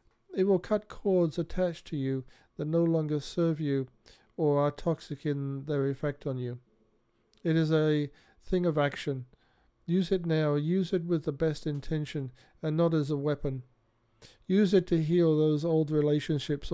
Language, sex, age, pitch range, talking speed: English, male, 50-69, 140-160 Hz, 170 wpm